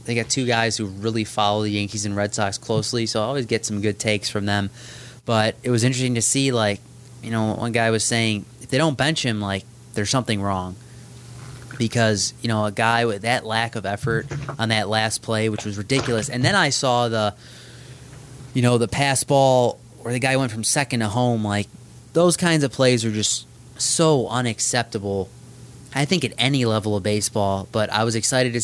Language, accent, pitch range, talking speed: English, American, 110-130 Hz, 210 wpm